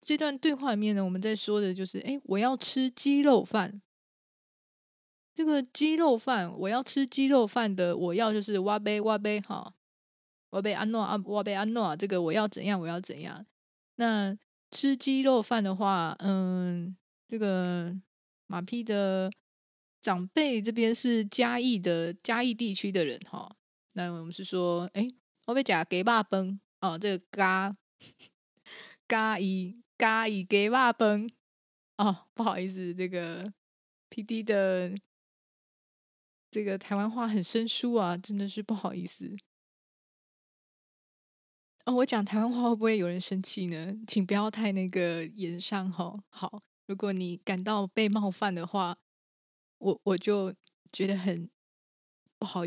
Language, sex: Chinese, female